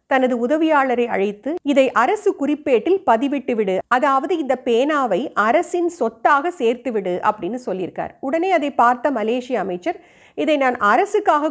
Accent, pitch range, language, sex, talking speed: native, 225-300 Hz, Tamil, female, 130 wpm